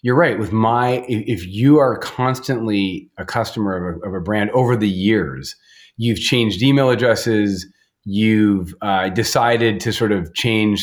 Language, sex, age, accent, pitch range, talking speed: English, male, 30-49, American, 100-120 Hz, 165 wpm